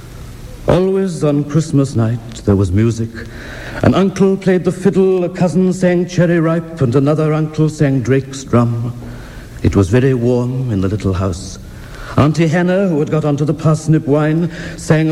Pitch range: 115-150 Hz